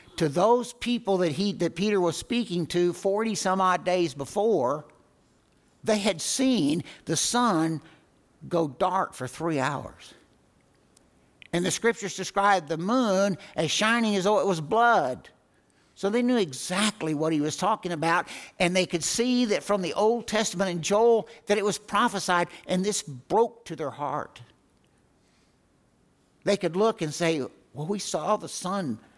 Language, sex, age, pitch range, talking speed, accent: English, male, 60-79, 135-200 Hz, 155 wpm, American